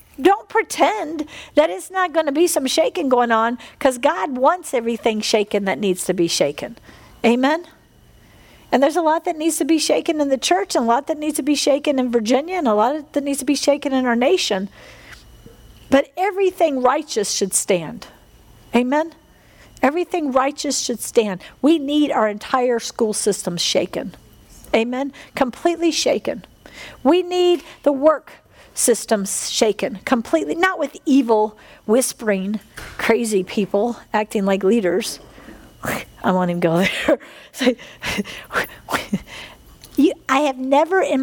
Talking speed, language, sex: 145 wpm, English, female